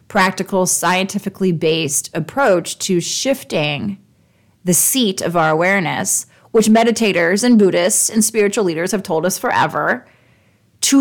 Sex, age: female, 30-49